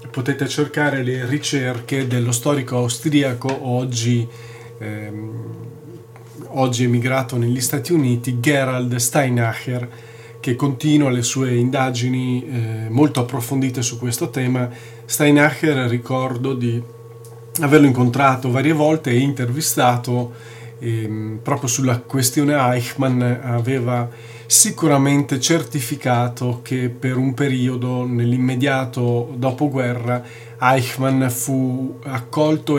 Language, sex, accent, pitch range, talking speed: Italian, male, native, 120-135 Hz, 95 wpm